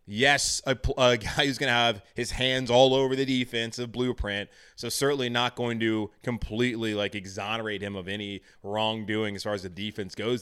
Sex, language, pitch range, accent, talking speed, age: male, English, 100-125 Hz, American, 195 wpm, 20-39